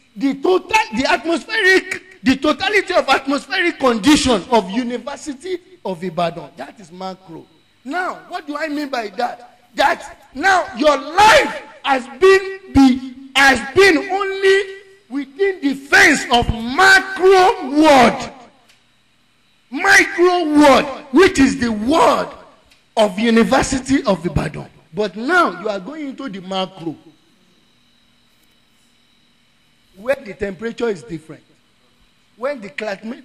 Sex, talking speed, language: male, 115 wpm, English